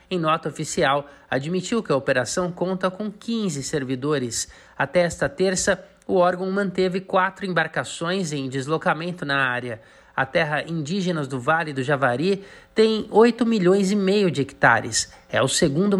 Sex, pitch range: male, 140-190 Hz